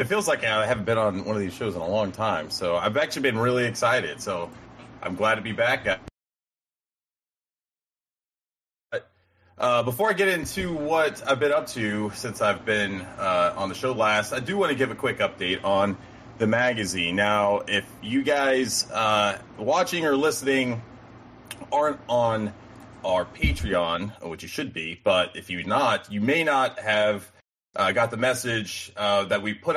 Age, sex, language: 30-49, male, English